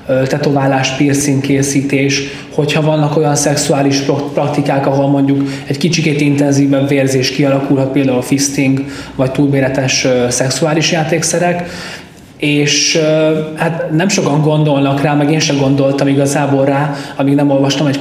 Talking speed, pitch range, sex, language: 125 wpm, 135-150 Hz, male, Hungarian